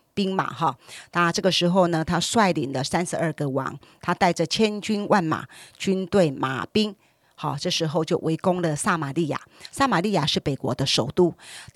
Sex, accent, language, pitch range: female, American, Chinese, 155-200 Hz